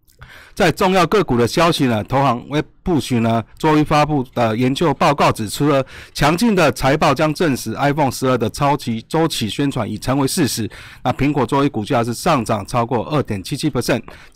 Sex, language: male, Chinese